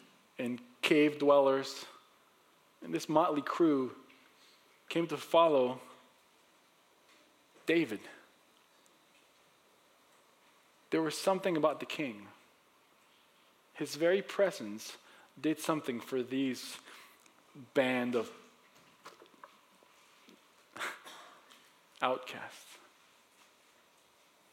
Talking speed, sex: 65 wpm, male